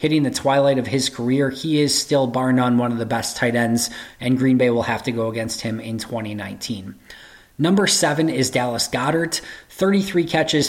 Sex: male